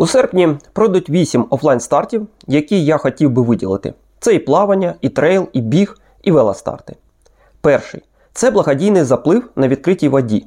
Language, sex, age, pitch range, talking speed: Ukrainian, male, 30-49, 145-215 Hz, 155 wpm